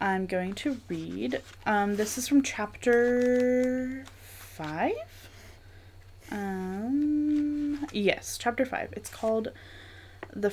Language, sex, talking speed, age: English, female, 95 wpm, 10-29